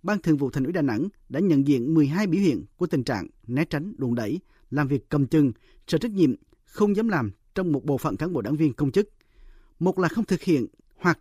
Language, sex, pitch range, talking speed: Vietnamese, male, 140-200 Hz, 245 wpm